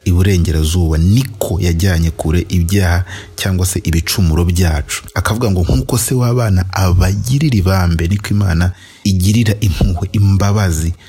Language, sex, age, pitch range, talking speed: English, male, 30-49, 85-100 Hz, 120 wpm